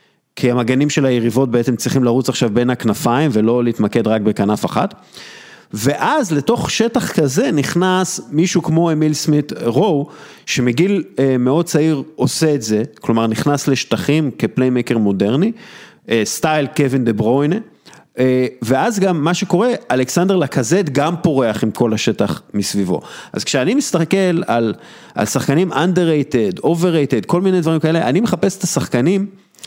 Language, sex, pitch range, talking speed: Hebrew, male, 120-170 Hz, 140 wpm